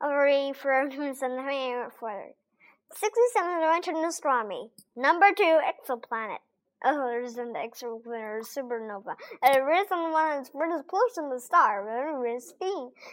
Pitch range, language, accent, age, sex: 250-345 Hz, Chinese, American, 10-29, male